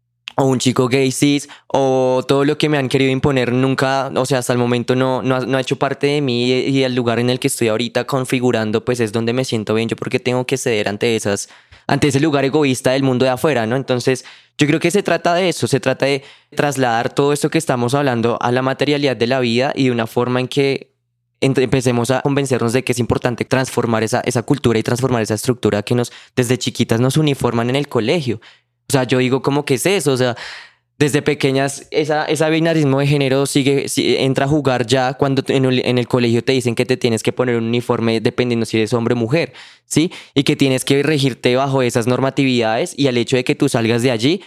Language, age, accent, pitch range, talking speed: Spanish, 10-29, Colombian, 120-140 Hz, 230 wpm